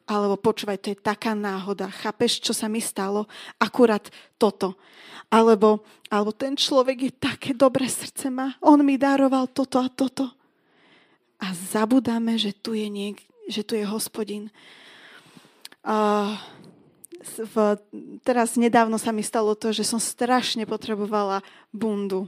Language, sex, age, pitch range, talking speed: Slovak, female, 20-39, 210-265 Hz, 140 wpm